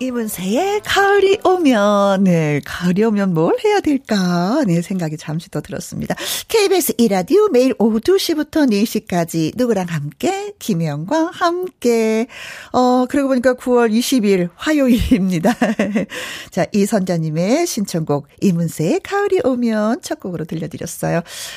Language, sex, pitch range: Korean, female, 180-295 Hz